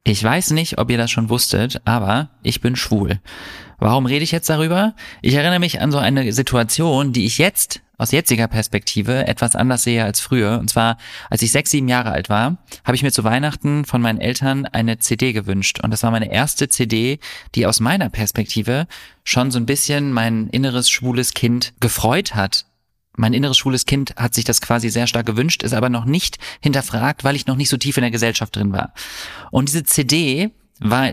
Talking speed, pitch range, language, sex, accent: 205 wpm, 110-135 Hz, German, male, German